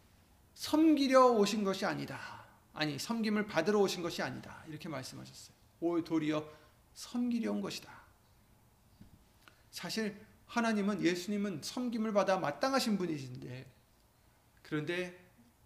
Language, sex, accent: Korean, male, native